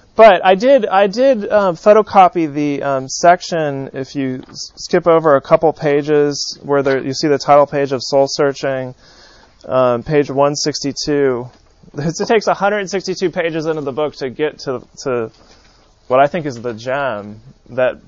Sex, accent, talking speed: male, American, 165 wpm